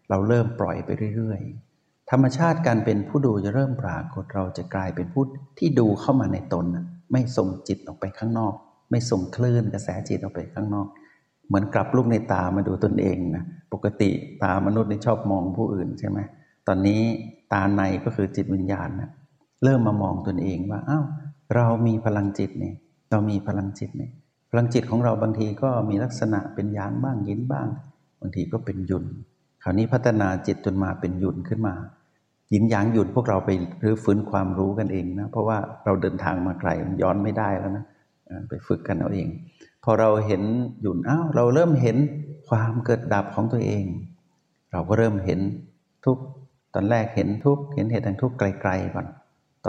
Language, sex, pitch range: Thai, male, 95-120 Hz